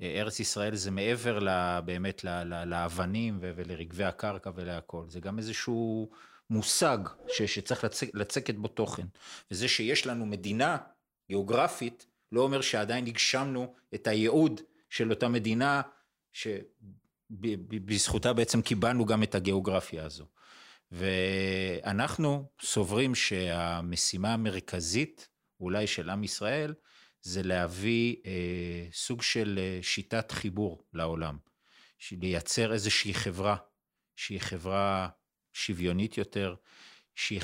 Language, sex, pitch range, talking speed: Hebrew, male, 95-115 Hz, 100 wpm